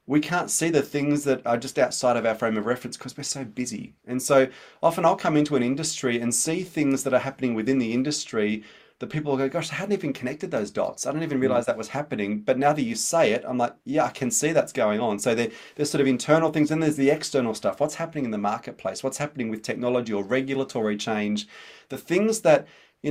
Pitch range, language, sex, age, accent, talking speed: 120-150 Hz, English, male, 30-49, Australian, 245 wpm